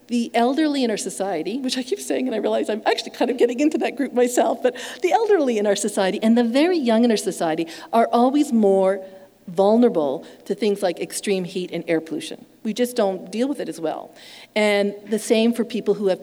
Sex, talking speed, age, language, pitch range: female, 225 wpm, 50-69, English, 175-230 Hz